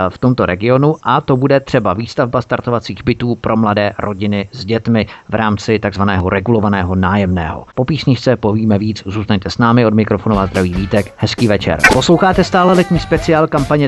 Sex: male